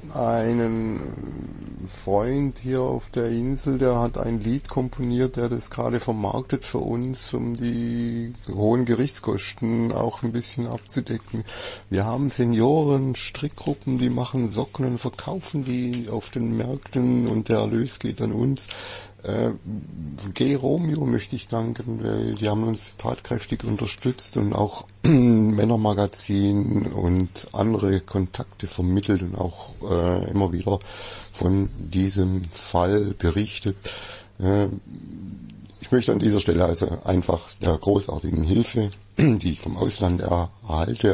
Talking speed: 130 wpm